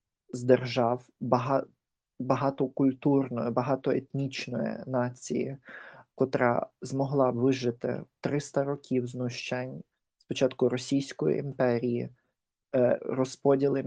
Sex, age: male, 20-39